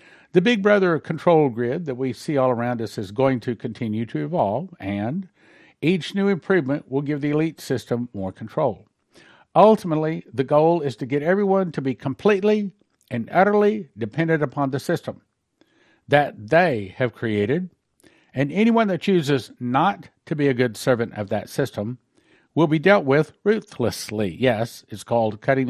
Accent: American